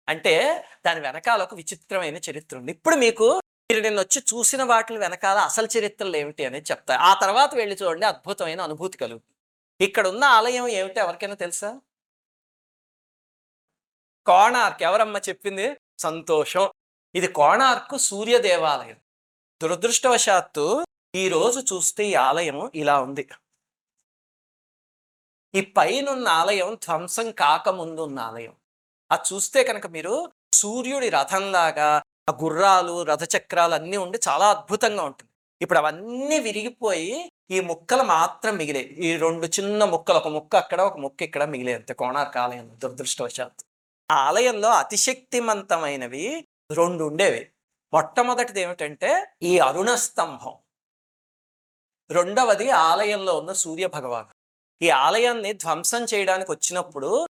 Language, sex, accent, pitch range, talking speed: Telugu, male, native, 160-230 Hz, 110 wpm